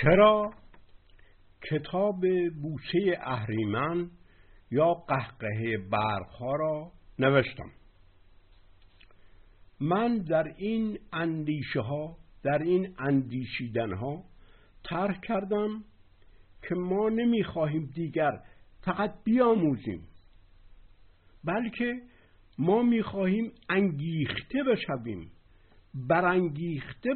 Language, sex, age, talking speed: Persian, male, 60-79, 70 wpm